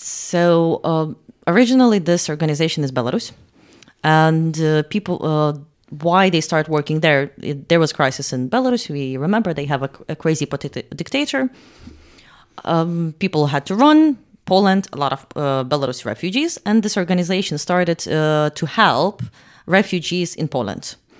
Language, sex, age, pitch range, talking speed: Polish, female, 30-49, 145-190 Hz, 145 wpm